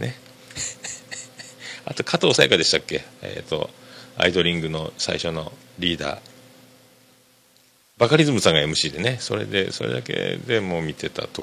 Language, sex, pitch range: Japanese, male, 95-130 Hz